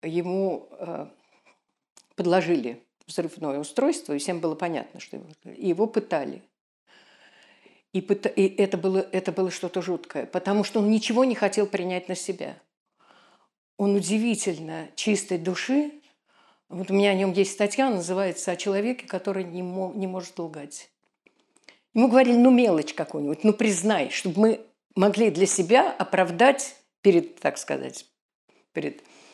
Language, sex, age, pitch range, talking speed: Russian, female, 50-69, 180-230 Hz, 135 wpm